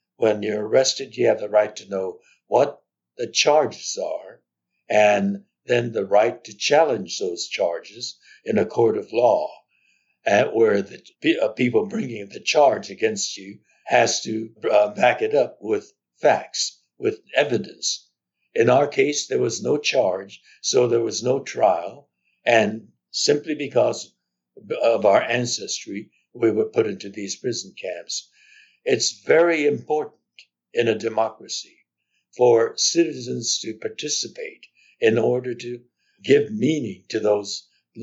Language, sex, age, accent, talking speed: English, male, 60-79, American, 135 wpm